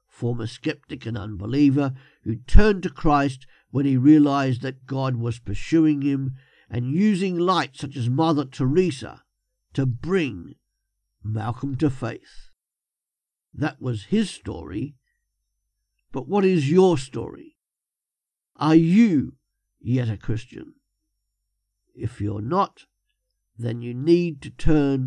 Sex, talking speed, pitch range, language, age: male, 120 wpm, 110-150 Hz, English, 50-69